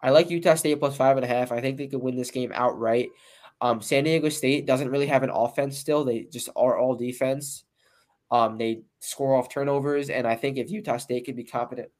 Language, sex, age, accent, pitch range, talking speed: English, male, 10-29, American, 115-135 Hz, 230 wpm